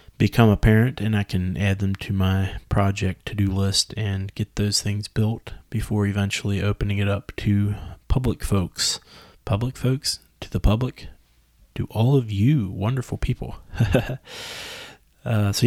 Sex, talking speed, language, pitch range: male, 150 wpm, English, 95-110 Hz